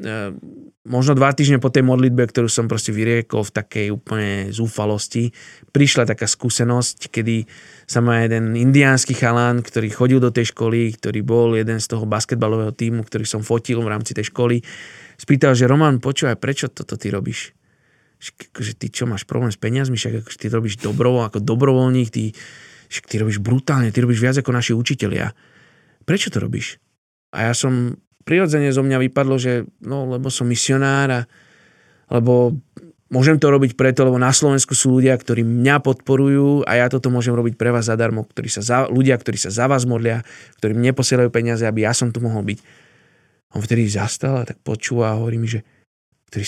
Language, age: Slovak, 20-39